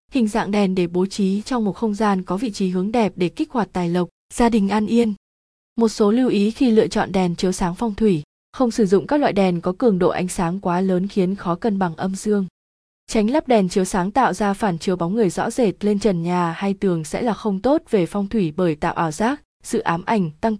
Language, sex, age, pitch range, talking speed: Vietnamese, female, 20-39, 180-230 Hz, 255 wpm